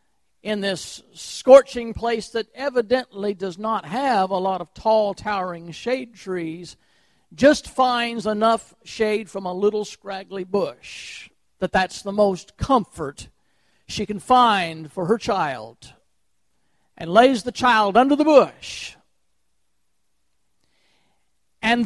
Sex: male